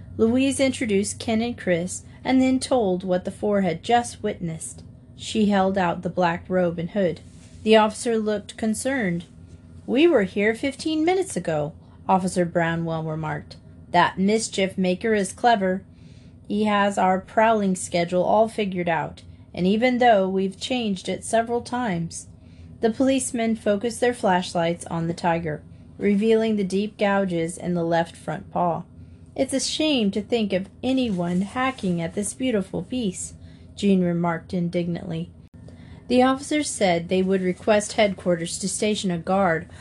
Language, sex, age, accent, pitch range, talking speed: English, female, 30-49, American, 175-225 Hz, 150 wpm